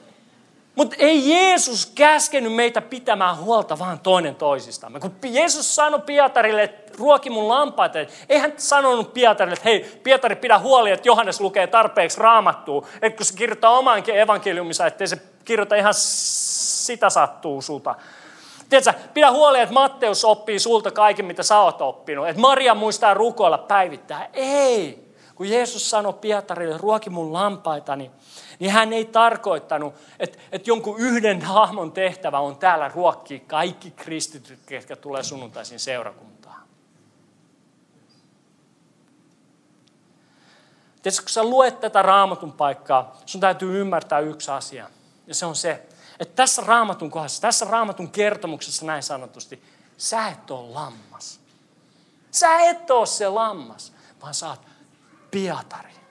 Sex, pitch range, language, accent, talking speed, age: male, 170-235 Hz, Finnish, native, 135 wpm, 30-49